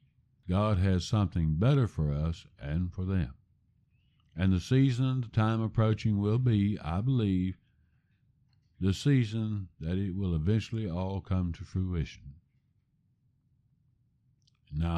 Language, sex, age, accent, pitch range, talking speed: English, male, 60-79, American, 90-125 Hz, 120 wpm